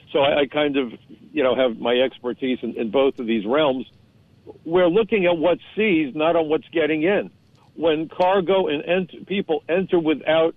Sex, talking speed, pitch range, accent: male, 175 wpm, 135-175 Hz, American